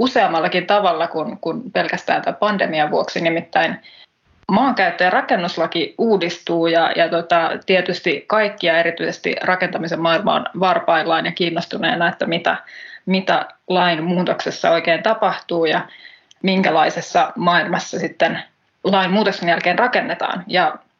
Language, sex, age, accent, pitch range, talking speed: Finnish, female, 20-39, native, 170-200 Hz, 110 wpm